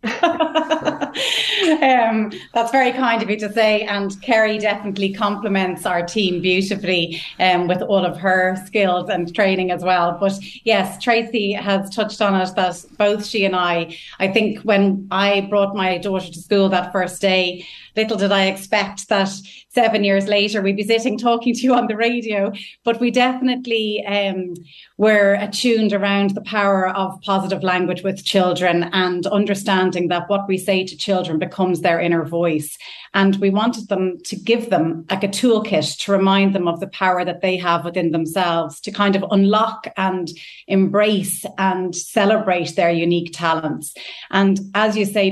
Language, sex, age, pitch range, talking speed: English, female, 30-49, 185-215 Hz, 170 wpm